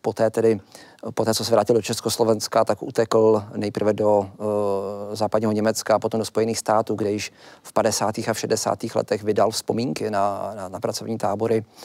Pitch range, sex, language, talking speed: 110-115 Hz, male, Czech, 190 wpm